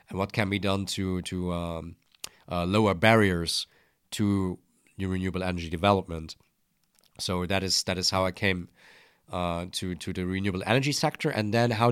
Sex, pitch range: male, 90-100 Hz